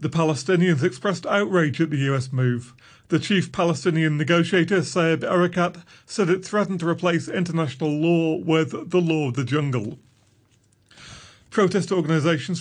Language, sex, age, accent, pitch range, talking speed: English, male, 40-59, British, 115-165 Hz, 140 wpm